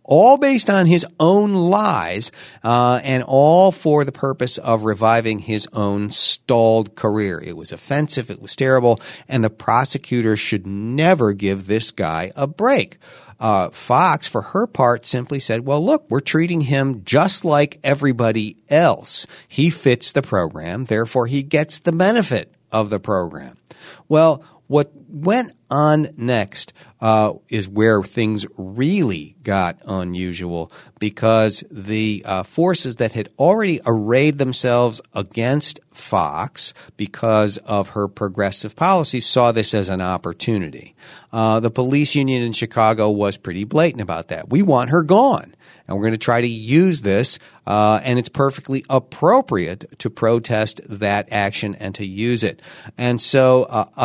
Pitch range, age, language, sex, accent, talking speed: 105-145 Hz, 50-69, English, male, American, 150 wpm